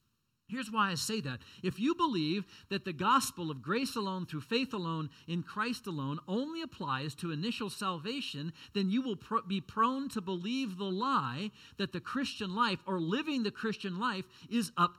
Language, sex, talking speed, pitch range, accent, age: English, male, 180 wpm, 170-245 Hz, American, 50-69